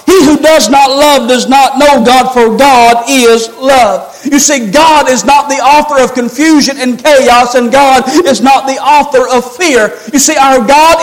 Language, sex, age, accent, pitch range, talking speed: English, male, 40-59, American, 250-305 Hz, 195 wpm